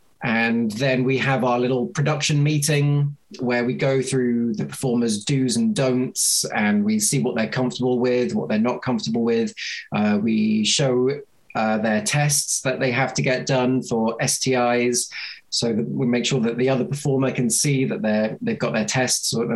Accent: British